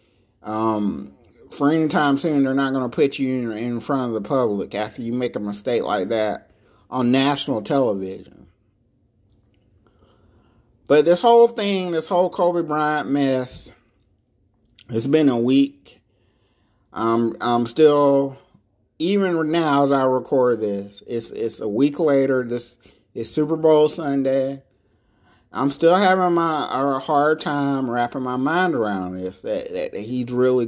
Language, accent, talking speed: English, American, 145 wpm